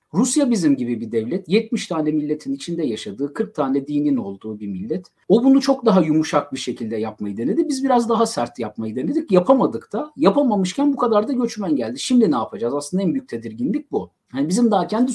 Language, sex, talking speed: Turkish, male, 200 wpm